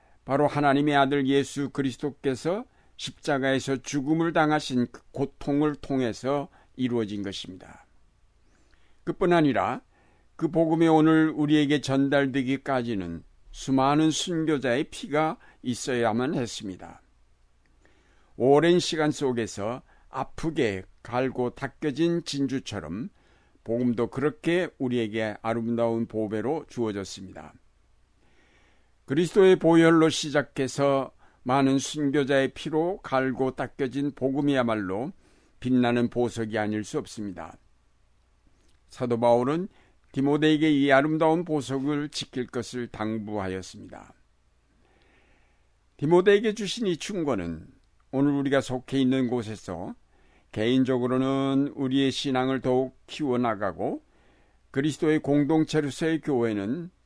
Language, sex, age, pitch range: Korean, male, 60-79, 120-150 Hz